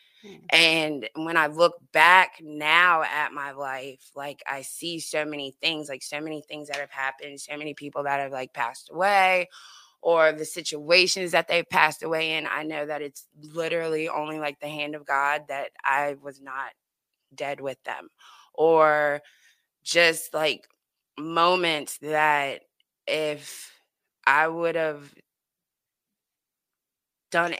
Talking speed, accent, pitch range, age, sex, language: 145 wpm, American, 140-160 Hz, 20-39, female, English